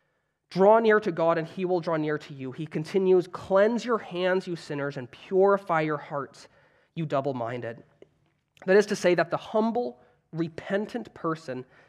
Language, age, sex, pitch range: English, 20-39, male, 145-185 Hz